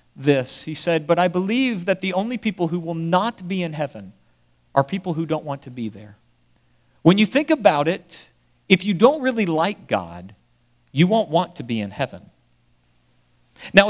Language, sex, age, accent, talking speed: English, male, 50-69, American, 185 wpm